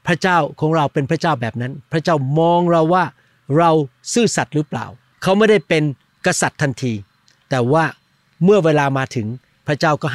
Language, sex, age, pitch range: Thai, male, 60-79, 135-180 Hz